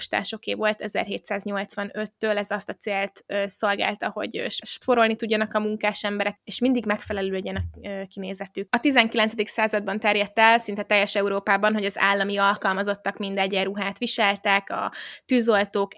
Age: 20-39